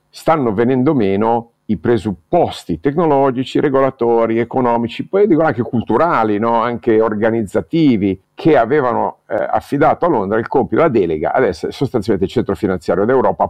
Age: 50-69